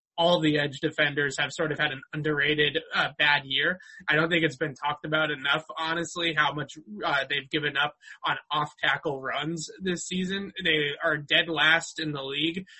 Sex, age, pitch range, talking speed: male, 20-39, 145-170 Hz, 190 wpm